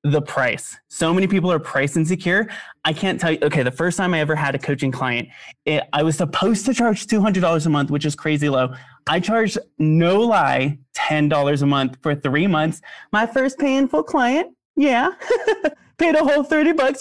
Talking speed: 195 wpm